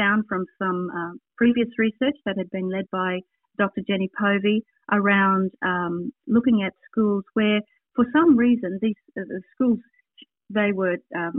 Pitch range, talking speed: 195-245 Hz, 160 wpm